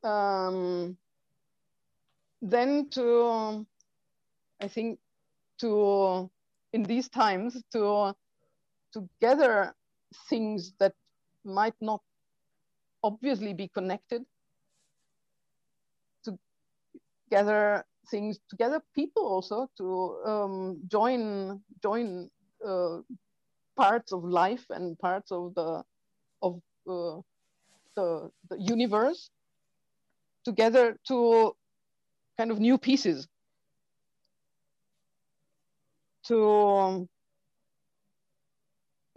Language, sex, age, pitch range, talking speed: English, female, 50-69, 180-230 Hz, 80 wpm